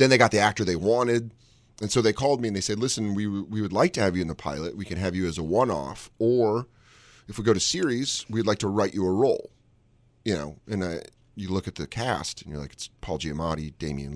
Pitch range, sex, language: 95-115 Hz, male, English